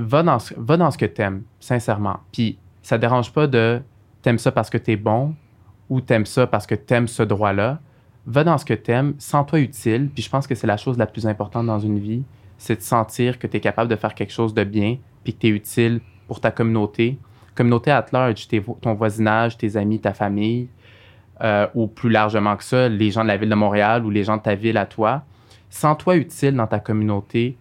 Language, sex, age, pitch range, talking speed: French, male, 20-39, 105-125 Hz, 220 wpm